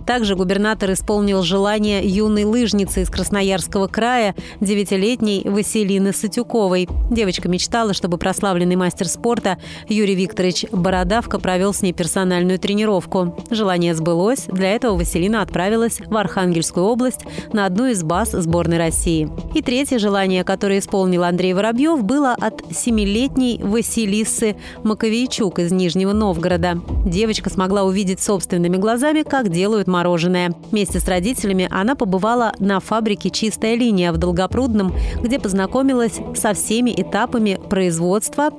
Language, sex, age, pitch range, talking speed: Russian, female, 30-49, 185-225 Hz, 125 wpm